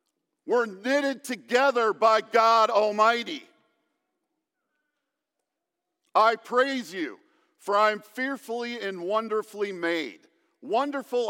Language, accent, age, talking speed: English, American, 50-69, 90 wpm